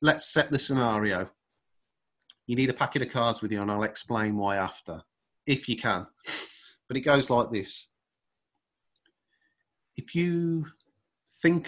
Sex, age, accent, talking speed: male, 30-49, British, 145 wpm